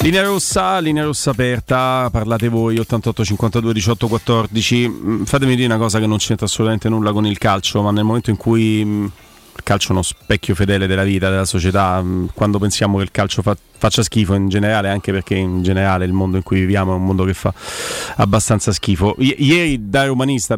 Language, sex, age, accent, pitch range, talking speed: Italian, male, 30-49, native, 100-115 Hz, 190 wpm